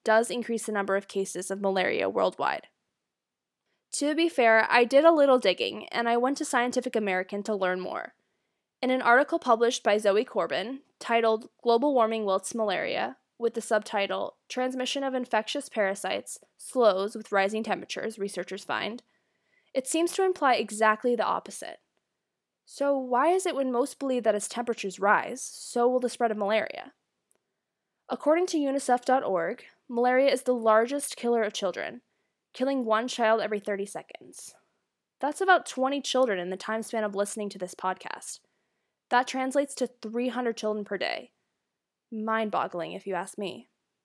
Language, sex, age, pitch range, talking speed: English, female, 10-29, 210-260 Hz, 160 wpm